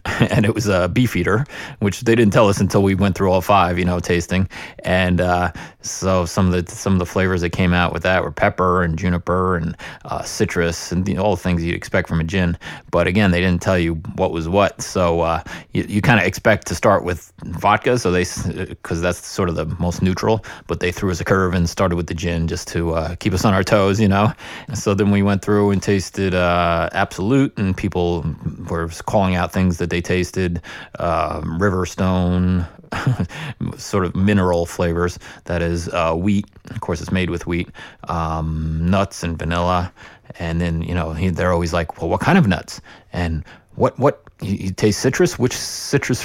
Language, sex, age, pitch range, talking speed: English, male, 30-49, 85-100 Hz, 215 wpm